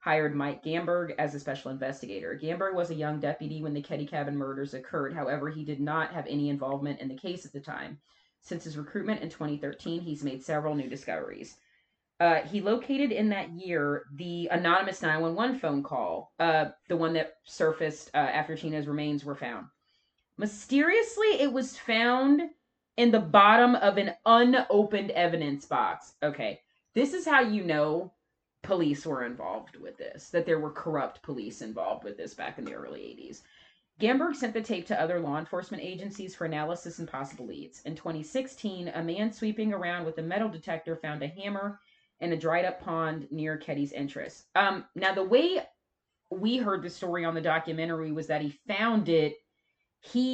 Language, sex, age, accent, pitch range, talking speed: English, female, 30-49, American, 150-205 Hz, 180 wpm